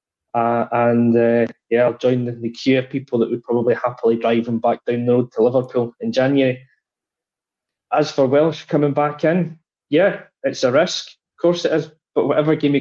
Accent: British